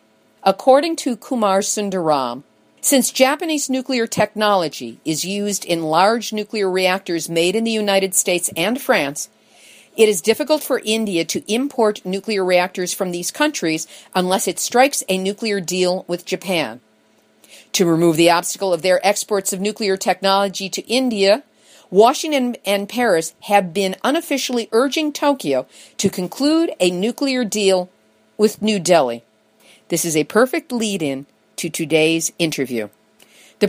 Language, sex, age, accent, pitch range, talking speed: English, female, 50-69, American, 175-230 Hz, 140 wpm